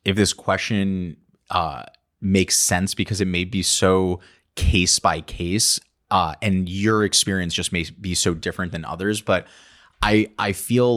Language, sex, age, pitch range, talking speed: English, male, 30-49, 90-100 Hz, 160 wpm